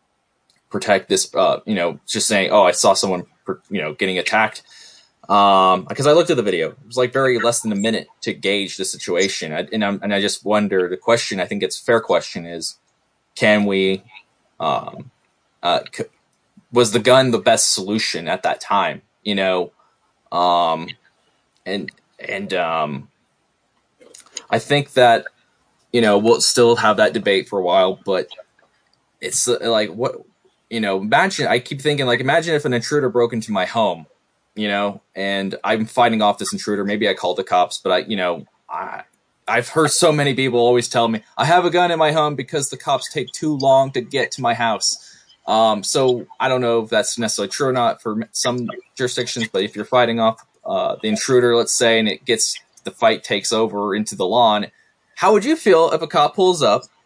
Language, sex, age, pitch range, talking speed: English, male, 20-39, 105-145 Hz, 200 wpm